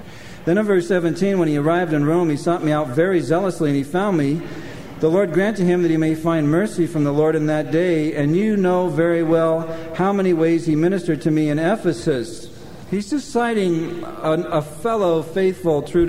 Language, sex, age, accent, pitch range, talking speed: English, male, 50-69, American, 145-195 Hz, 215 wpm